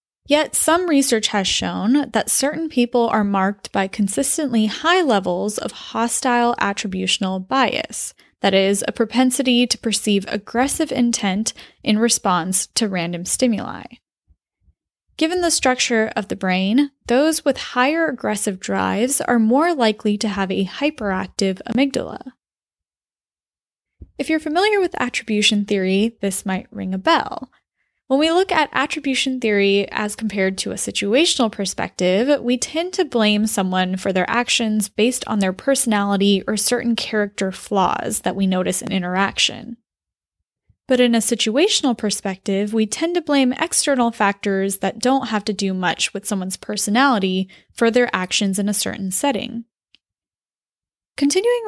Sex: female